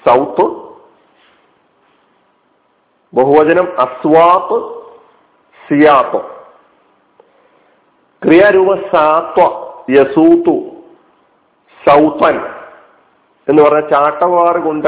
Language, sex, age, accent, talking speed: Malayalam, male, 50-69, native, 50 wpm